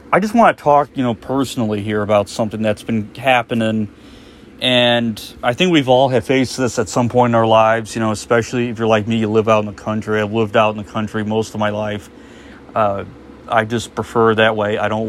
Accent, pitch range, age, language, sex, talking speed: American, 110-125 Hz, 30-49, English, male, 235 wpm